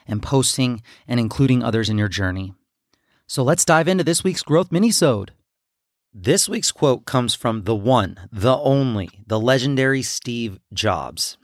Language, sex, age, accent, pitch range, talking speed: English, male, 30-49, American, 110-140 Hz, 150 wpm